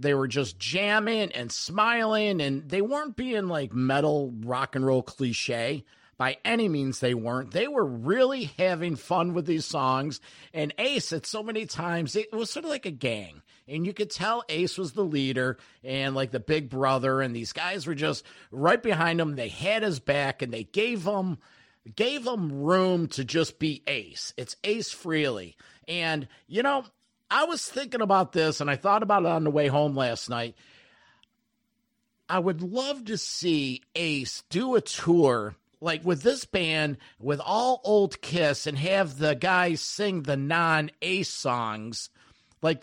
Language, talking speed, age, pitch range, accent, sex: English, 175 wpm, 50-69, 140-205 Hz, American, male